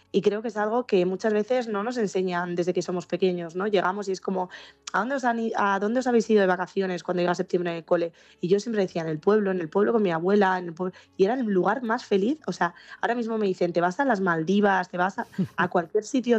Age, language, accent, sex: 20-39, Spanish, Spanish, female